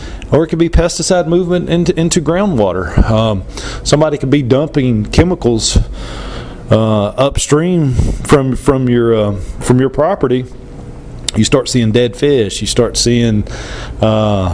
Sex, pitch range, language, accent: male, 105-140 Hz, English, American